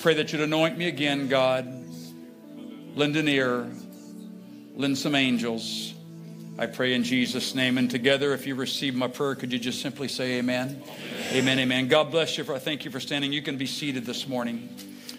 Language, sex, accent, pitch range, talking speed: English, male, American, 135-195 Hz, 185 wpm